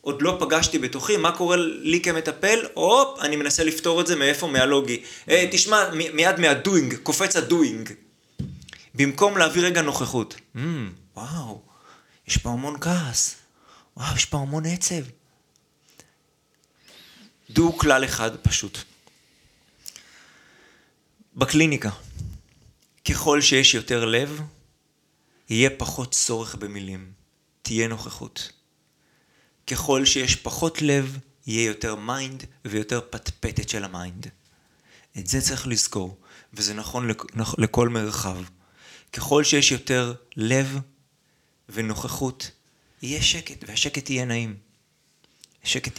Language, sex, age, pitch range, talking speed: Hebrew, male, 30-49, 110-145 Hz, 110 wpm